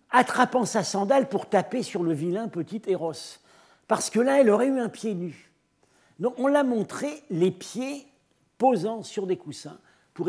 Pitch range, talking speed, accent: 155-220 Hz, 175 wpm, French